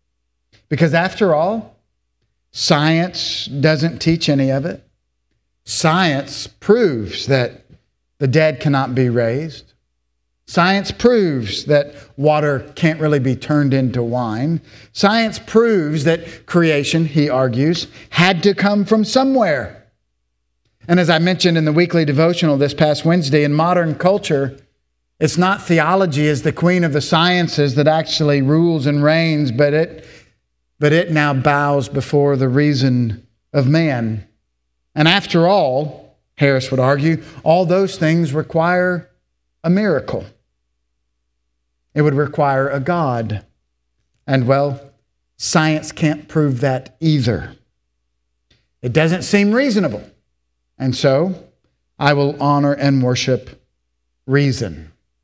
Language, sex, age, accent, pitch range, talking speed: English, male, 50-69, American, 110-165 Hz, 125 wpm